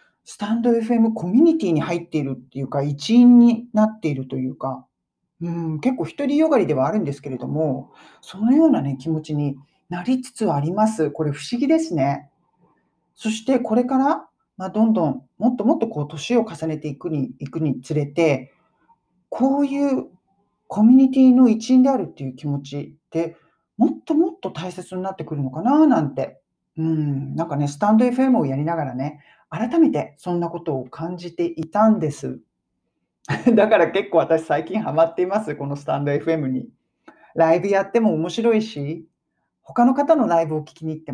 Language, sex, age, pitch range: Japanese, male, 40-59, 150-225 Hz